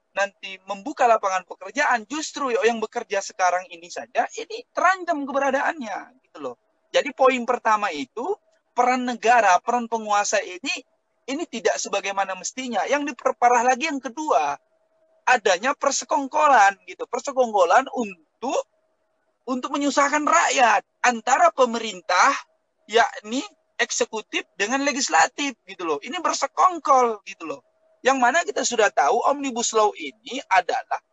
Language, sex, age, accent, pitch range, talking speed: Indonesian, male, 20-39, native, 240-320 Hz, 120 wpm